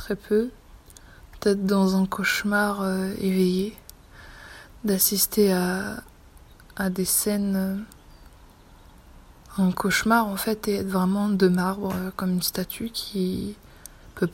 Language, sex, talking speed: French, female, 115 wpm